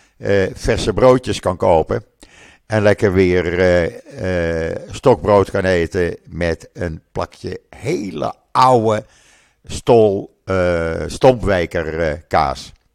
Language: Dutch